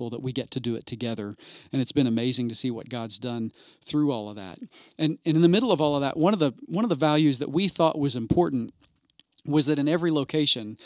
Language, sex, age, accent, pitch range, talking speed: English, male, 40-59, American, 125-145 Hz, 250 wpm